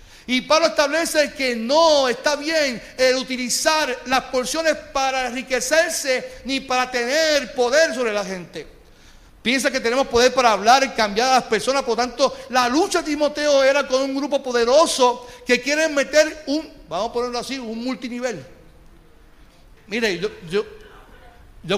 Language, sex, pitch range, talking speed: Spanish, male, 200-265 Hz, 155 wpm